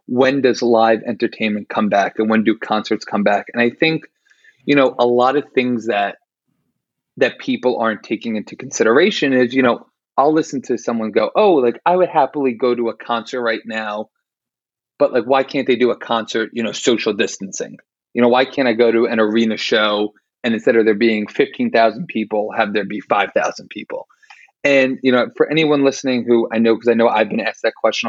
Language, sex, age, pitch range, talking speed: English, male, 30-49, 115-145 Hz, 210 wpm